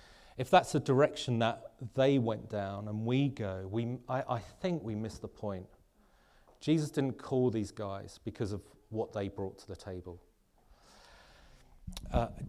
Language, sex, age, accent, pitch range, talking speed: English, male, 30-49, British, 95-115 Hz, 160 wpm